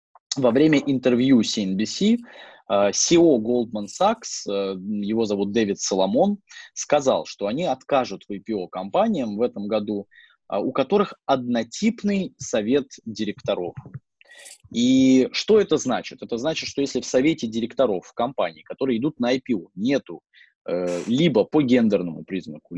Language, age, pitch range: Russian, 20-39, 100-155 Hz